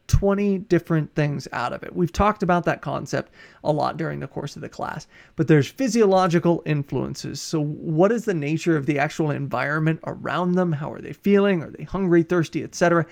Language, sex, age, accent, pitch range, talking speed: English, male, 30-49, American, 155-185 Hz, 195 wpm